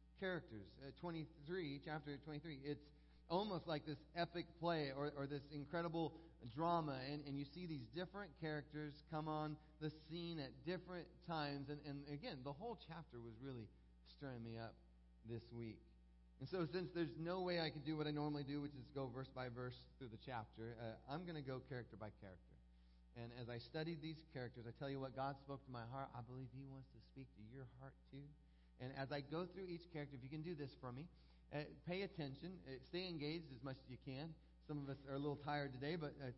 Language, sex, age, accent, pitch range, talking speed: English, male, 30-49, American, 125-165 Hz, 220 wpm